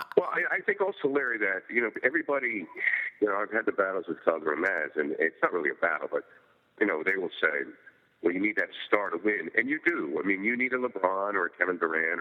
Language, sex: English, male